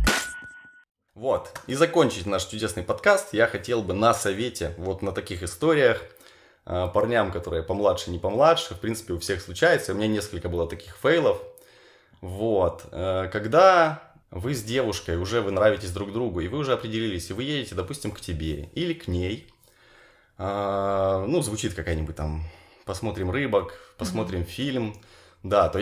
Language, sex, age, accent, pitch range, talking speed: Ukrainian, male, 20-39, native, 95-145 Hz, 150 wpm